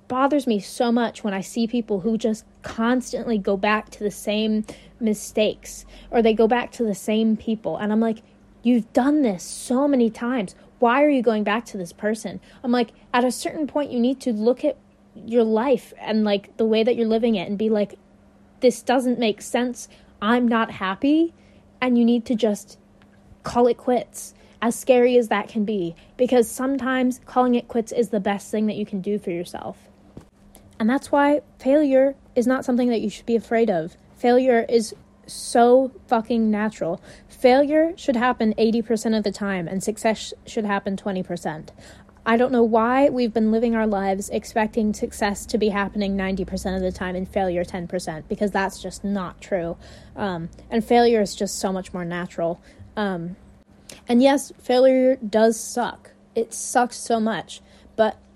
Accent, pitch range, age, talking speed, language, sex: American, 205-245 Hz, 20-39, 185 wpm, English, female